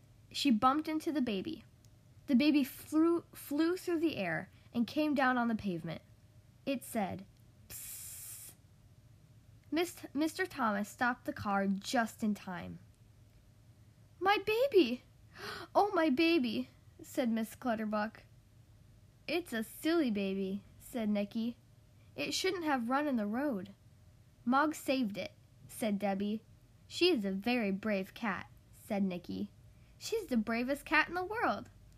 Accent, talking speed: American, 130 wpm